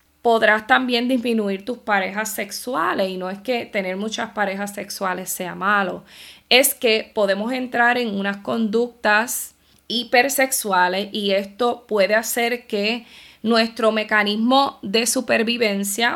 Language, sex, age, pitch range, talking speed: Spanish, female, 20-39, 195-245 Hz, 125 wpm